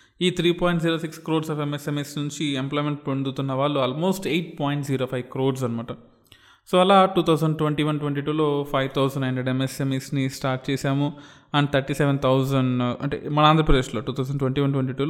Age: 20-39